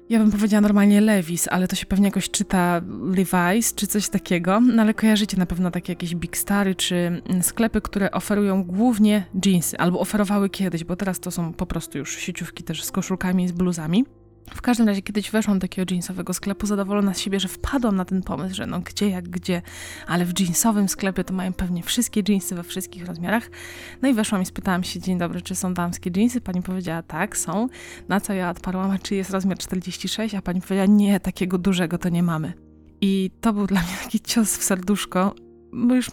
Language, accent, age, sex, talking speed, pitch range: Polish, native, 20-39, female, 210 wpm, 180-210 Hz